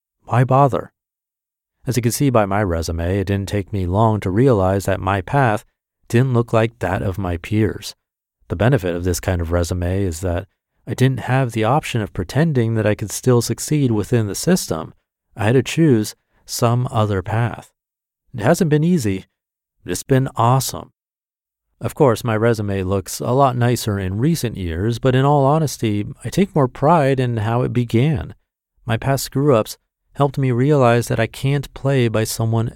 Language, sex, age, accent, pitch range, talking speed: English, male, 40-59, American, 95-130 Hz, 185 wpm